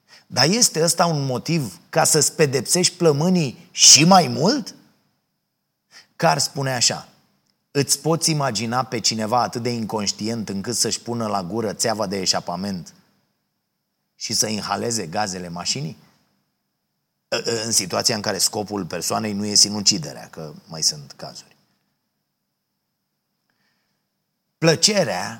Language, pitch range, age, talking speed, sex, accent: Romanian, 115-150 Hz, 30-49, 120 wpm, male, native